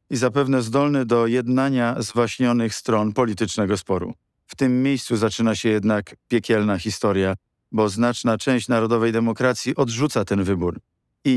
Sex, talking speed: male, 135 wpm